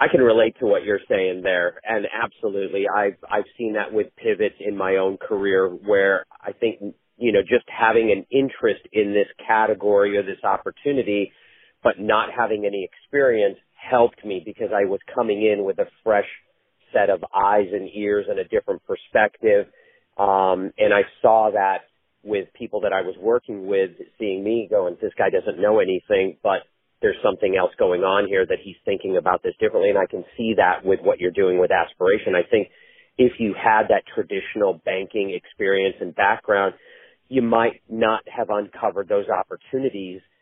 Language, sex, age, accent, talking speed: English, male, 40-59, American, 180 wpm